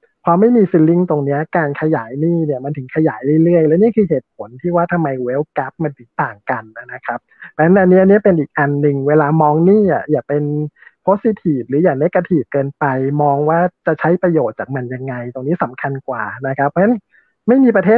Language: Thai